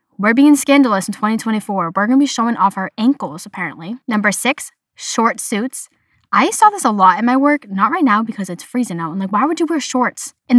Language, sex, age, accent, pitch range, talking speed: English, female, 10-29, American, 195-260 Hz, 230 wpm